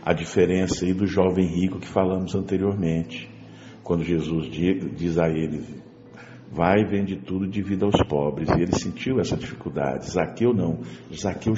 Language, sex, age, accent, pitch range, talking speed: Portuguese, male, 60-79, Brazilian, 85-115 Hz, 155 wpm